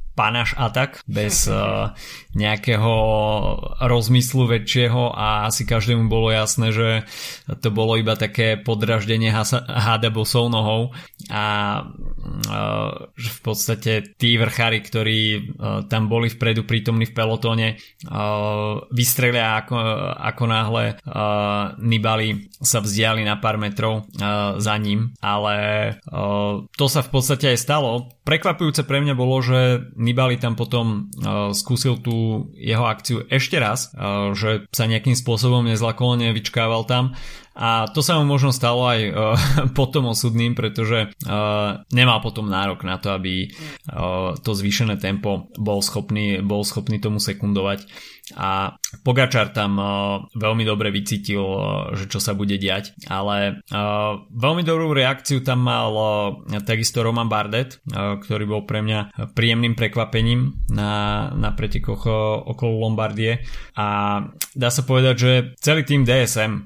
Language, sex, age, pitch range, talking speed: Slovak, male, 20-39, 105-125 Hz, 130 wpm